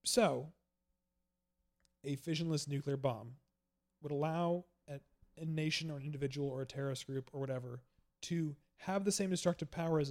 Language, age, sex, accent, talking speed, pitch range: English, 30-49, male, American, 155 wpm, 125-160 Hz